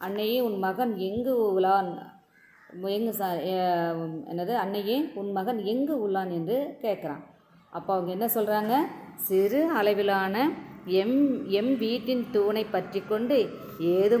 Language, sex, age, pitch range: Tamil, female, 20-39, 175-230 Hz